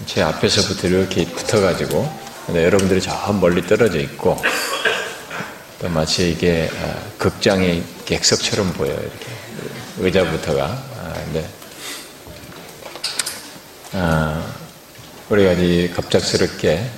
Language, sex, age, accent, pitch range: Korean, male, 40-59, native, 80-100 Hz